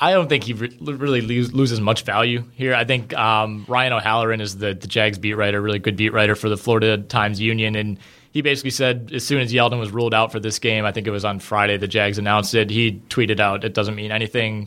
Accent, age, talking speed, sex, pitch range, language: American, 20-39, 240 wpm, male, 110-125 Hz, English